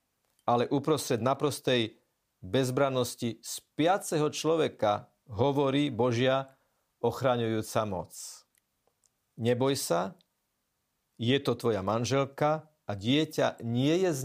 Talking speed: 90 wpm